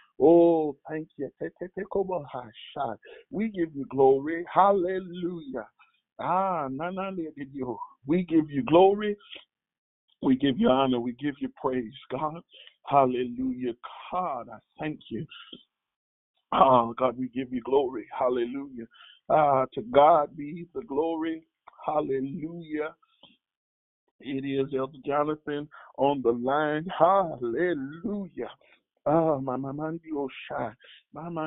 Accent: American